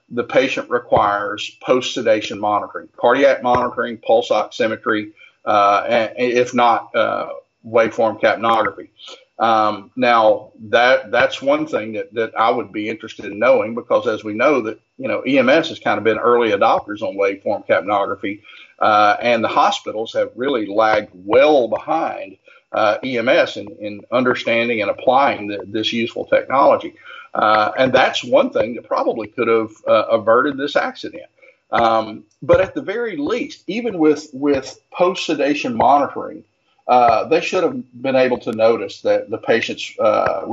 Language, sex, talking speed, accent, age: English, male, 155 wpm, American, 50-69